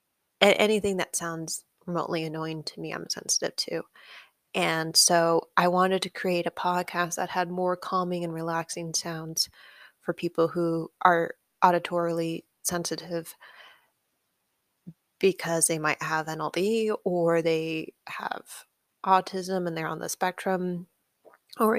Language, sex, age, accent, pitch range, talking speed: English, female, 20-39, American, 165-190 Hz, 125 wpm